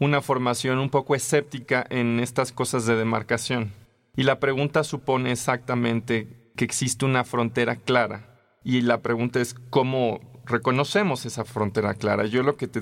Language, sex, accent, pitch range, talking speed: Spanish, male, Mexican, 115-135 Hz, 155 wpm